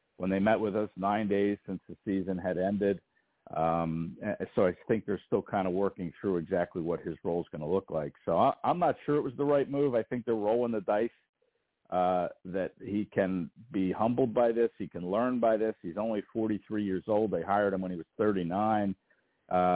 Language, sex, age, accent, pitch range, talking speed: English, male, 50-69, American, 90-110 Hz, 215 wpm